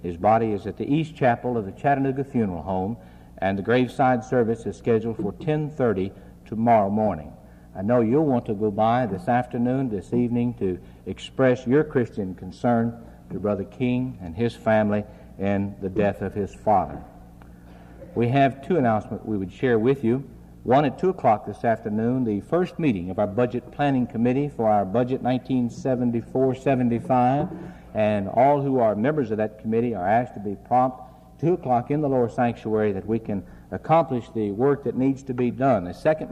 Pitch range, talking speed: 105-135 Hz, 180 wpm